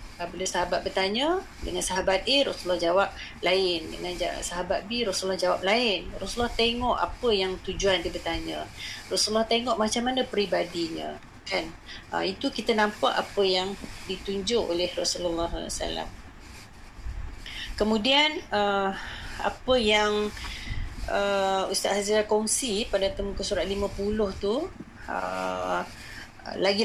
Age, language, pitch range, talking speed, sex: 30-49, Malay, 190-225 Hz, 120 wpm, female